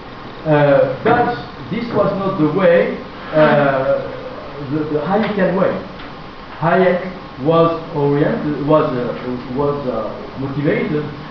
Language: Italian